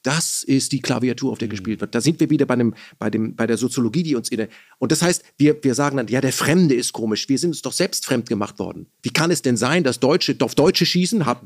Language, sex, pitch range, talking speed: German, male, 125-175 Hz, 280 wpm